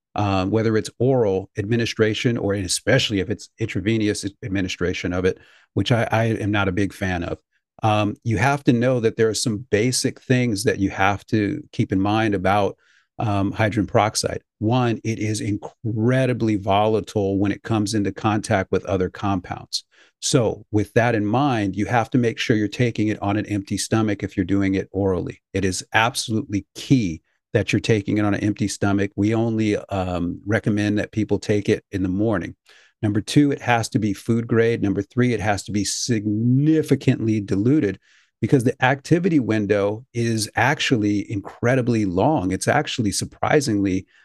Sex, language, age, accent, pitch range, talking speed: male, English, 40-59, American, 100-115 Hz, 175 wpm